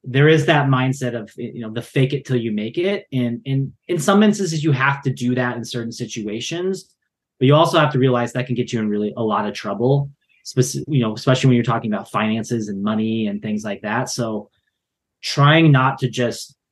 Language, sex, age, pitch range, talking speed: English, male, 30-49, 115-140 Hz, 225 wpm